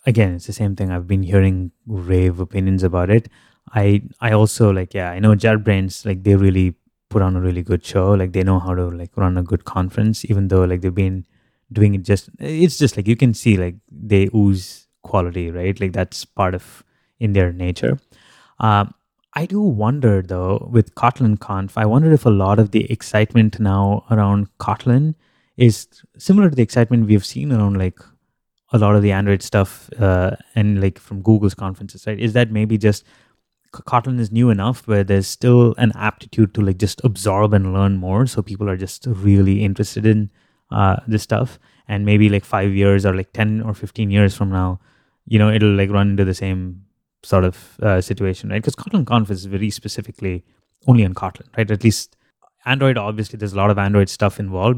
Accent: Indian